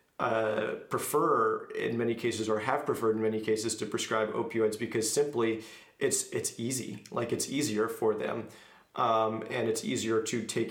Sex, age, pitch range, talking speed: male, 30-49, 110-120 Hz, 170 wpm